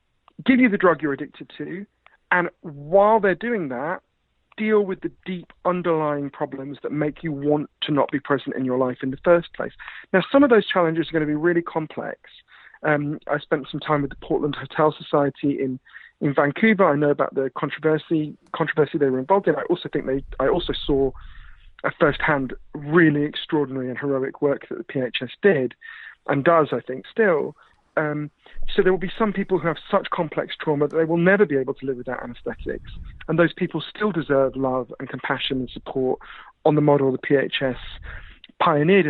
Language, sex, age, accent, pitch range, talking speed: English, male, 40-59, British, 135-175 Hz, 195 wpm